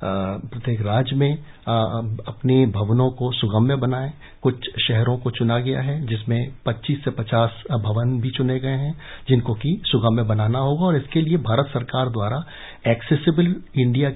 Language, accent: English, Indian